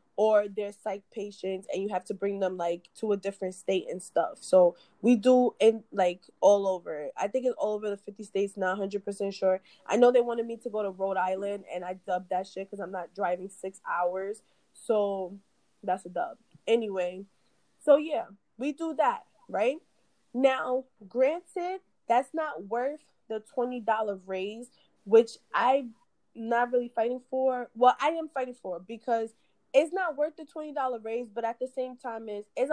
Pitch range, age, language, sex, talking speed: 200-255 Hz, 20-39, English, female, 185 wpm